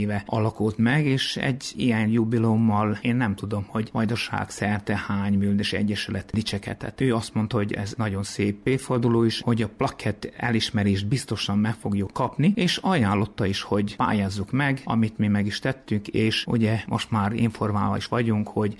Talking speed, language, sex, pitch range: 165 wpm, Hungarian, male, 105-125 Hz